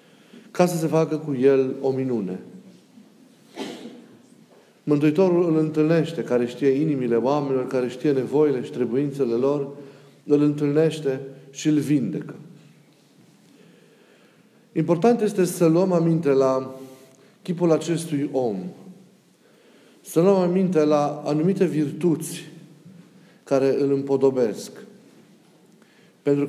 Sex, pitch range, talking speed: male, 110-165 Hz, 100 wpm